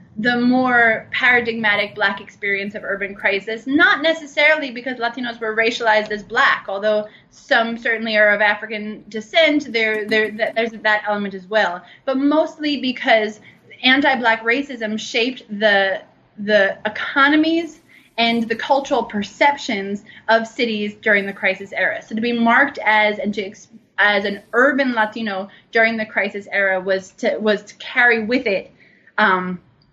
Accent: American